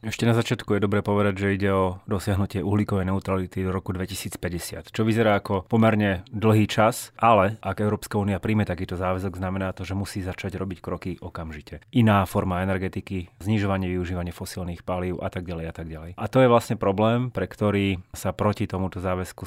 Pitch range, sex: 90-105 Hz, male